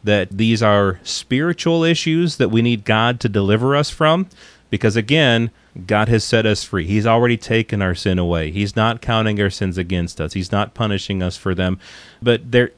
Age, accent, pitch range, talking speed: 30-49, American, 105-140 Hz, 195 wpm